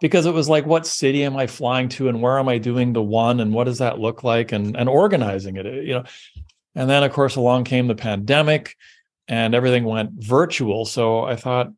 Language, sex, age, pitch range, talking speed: English, male, 40-59, 105-125 Hz, 225 wpm